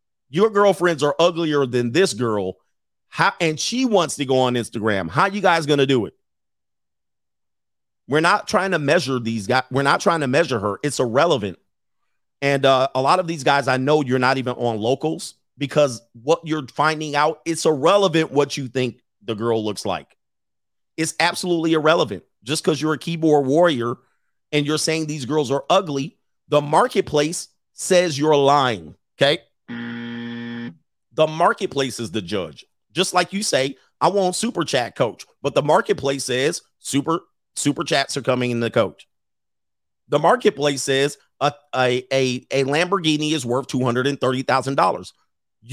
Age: 40-59